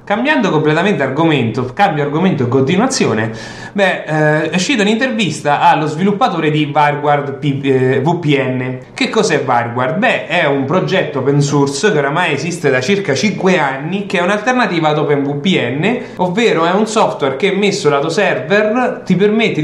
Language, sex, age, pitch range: English, male, 30-49, 135-190 Hz